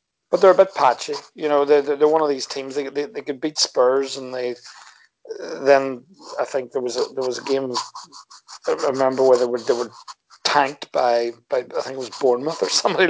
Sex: male